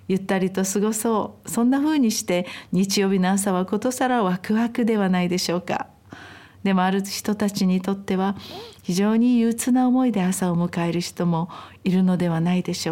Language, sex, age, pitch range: Japanese, female, 50-69, 185-225 Hz